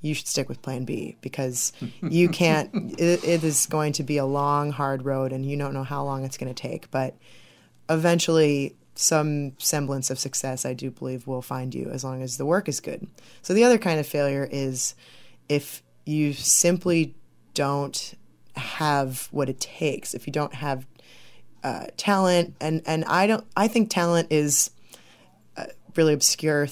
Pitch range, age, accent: 135-155 Hz, 20-39, American